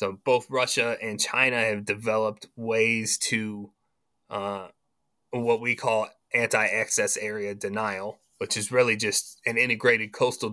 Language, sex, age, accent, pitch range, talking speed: English, male, 20-39, American, 100-115 Hz, 130 wpm